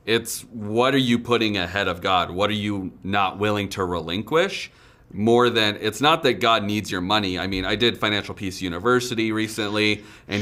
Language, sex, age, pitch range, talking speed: English, male, 30-49, 95-115 Hz, 190 wpm